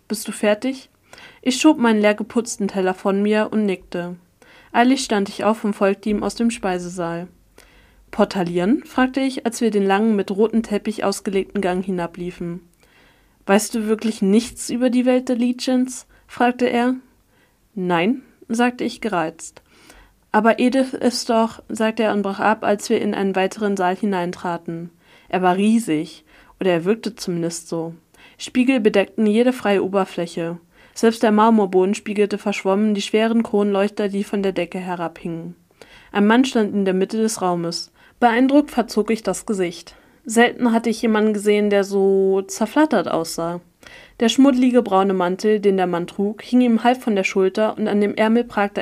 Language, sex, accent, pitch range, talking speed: German, female, German, 185-230 Hz, 165 wpm